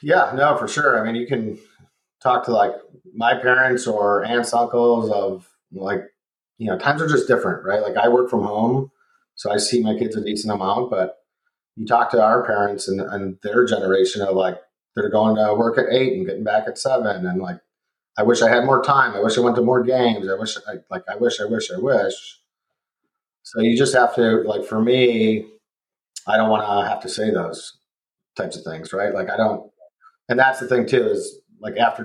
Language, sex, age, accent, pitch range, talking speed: English, male, 30-49, American, 105-130 Hz, 220 wpm